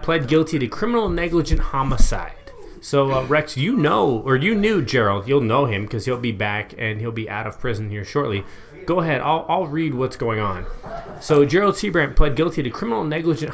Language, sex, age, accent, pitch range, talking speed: English, male, 30-49, American, 120-160 Hz, 205 wpm